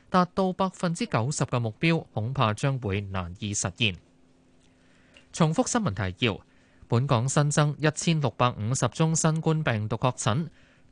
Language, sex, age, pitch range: Chinese, male, 20-39, 115-155 Hz